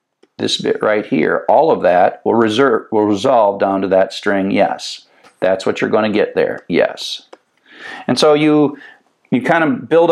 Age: 50-69